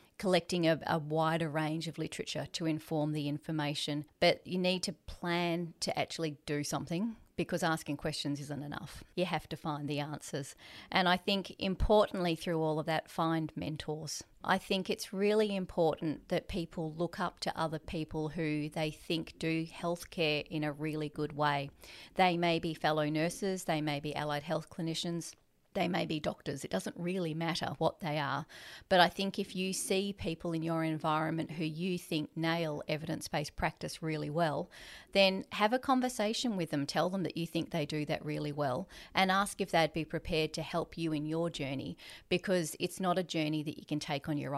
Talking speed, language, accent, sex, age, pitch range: 190 wpm, English, Australian, female, 30-49, 155-180 Hz